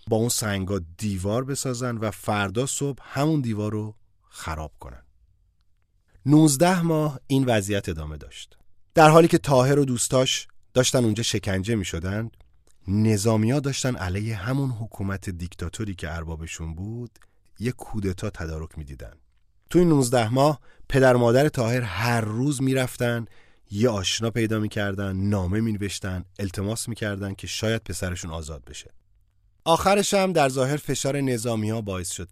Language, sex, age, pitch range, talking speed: Persian, male, 30-49, 90-125 Hz, 140 wpm